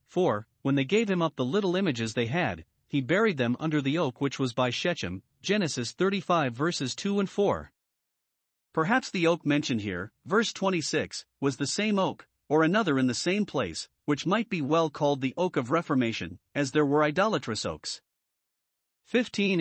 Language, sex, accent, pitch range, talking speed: English, male, American, 130-175 Hz, 180 wpm